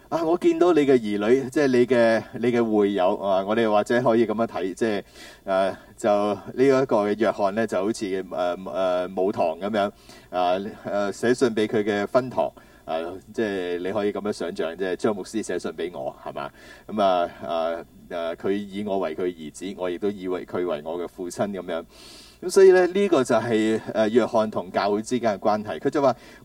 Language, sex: Chinese, male